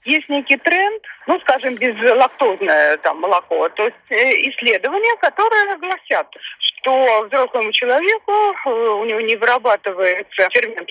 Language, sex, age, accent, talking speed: Russian, female, 30-49, native, 115 wpm